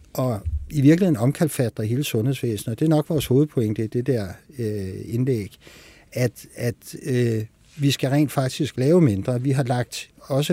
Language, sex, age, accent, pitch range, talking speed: Danish, male, 60-79, native, 115-145 Hz, 165 wpm